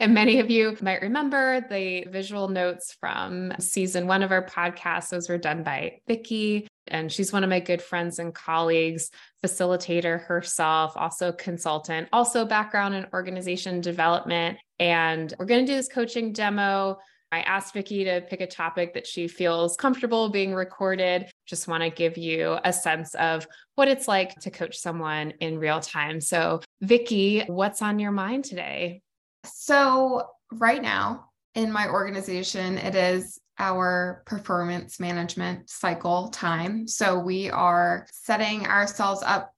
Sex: female